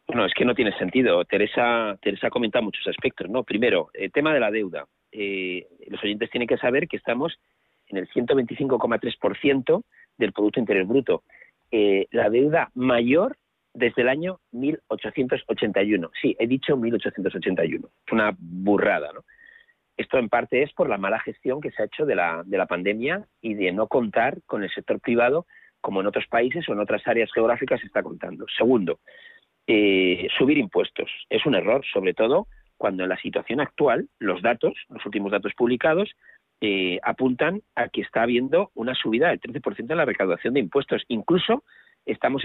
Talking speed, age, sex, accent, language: 170 wpm, 40-59, male, Spanish, Spanish